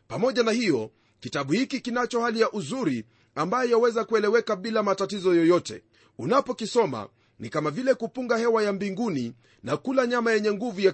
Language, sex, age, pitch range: Swahili, male, 40-59, 180-240 Hz